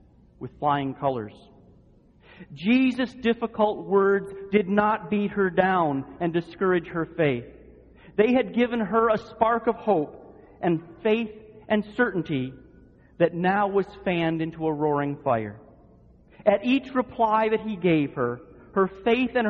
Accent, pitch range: American, 160-215 Hz